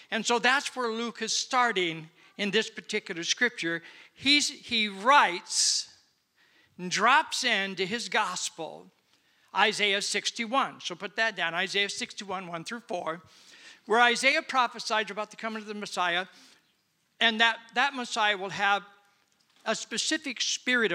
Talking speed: 140 wpm